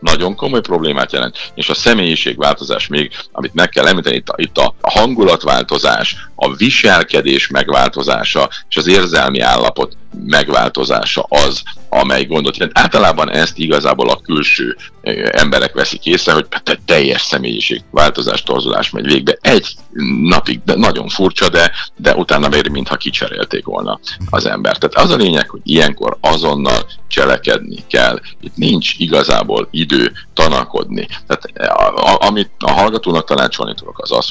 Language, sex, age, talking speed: Hungarian, male, 50-69, 145 wpm